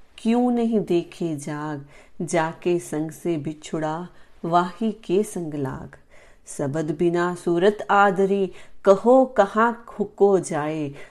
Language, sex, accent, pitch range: Hindi, female, native, 155-195 Hz